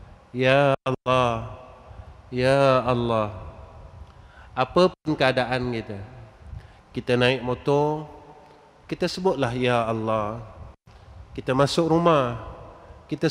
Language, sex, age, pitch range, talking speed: Malay, male, 30-49, 105-150 Hz, 85 wpm